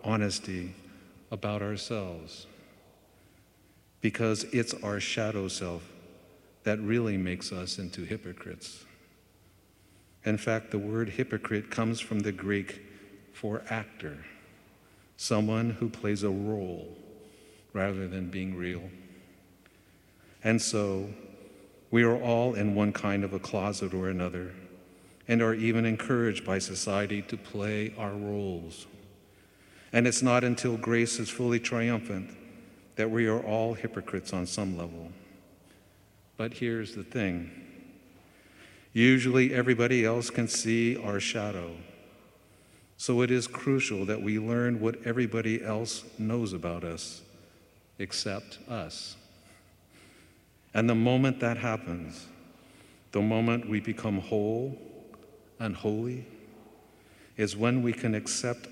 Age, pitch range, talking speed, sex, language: 50-69, 95-115 Hz, 120 wpm, male, English